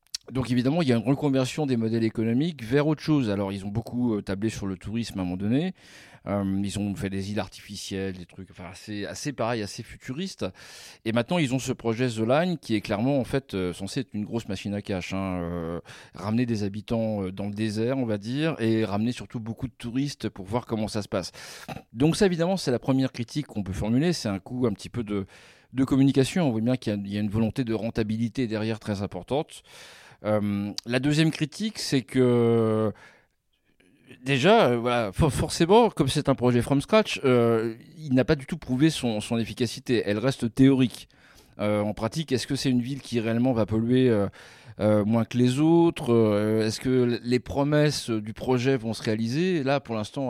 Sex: male